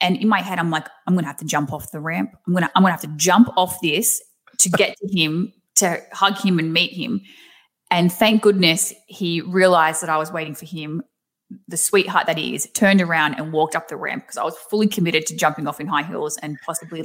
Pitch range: 165-200 Hz